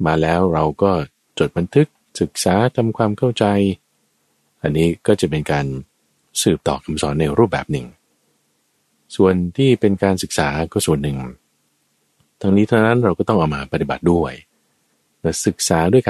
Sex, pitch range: male, 75-95 Hz